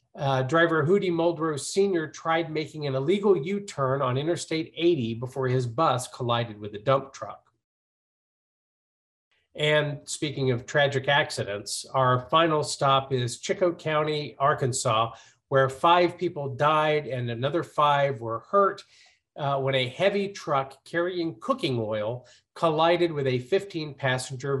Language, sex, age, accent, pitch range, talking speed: English, male, 50-69, American, 125-165 Hz, 130 wpm